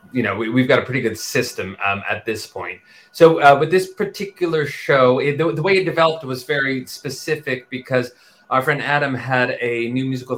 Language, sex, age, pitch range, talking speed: English, male, 30-49, 105-125 Hz, 195 wpm